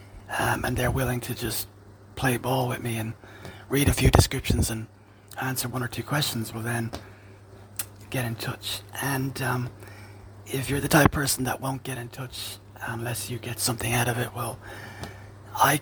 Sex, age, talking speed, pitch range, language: male, 30-49, 180 wpm, 100-120 Hz, English